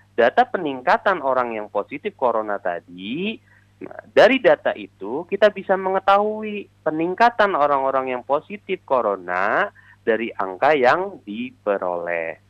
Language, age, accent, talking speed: Indonesian, 30-49, native, 105 wpm